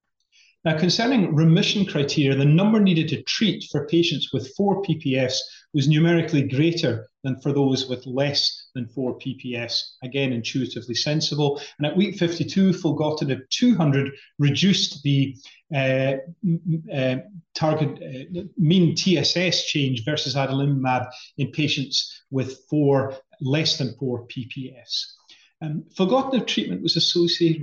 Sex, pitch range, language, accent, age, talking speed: male, 130-170 Hz, English, British, 30-49, 125 wpm